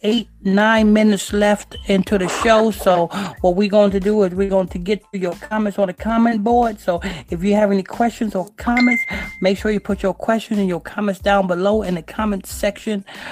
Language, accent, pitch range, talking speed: English, American, 175-205 Hz, 215 wpm